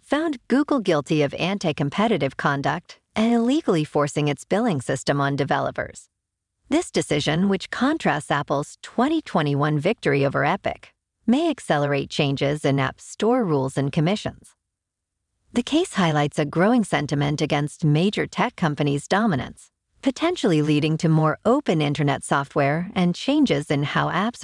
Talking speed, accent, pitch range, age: 135 wpm, American, 145-230 Hz, 50-69